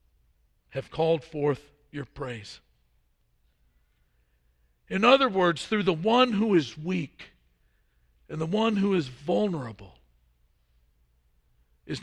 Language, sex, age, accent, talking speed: English, male, 50-69, American, 105 wpm